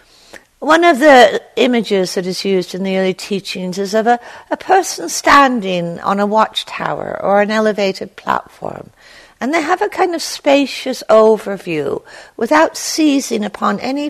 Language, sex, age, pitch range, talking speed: English, female, 60-79, 180-250 Hz, 155 wpm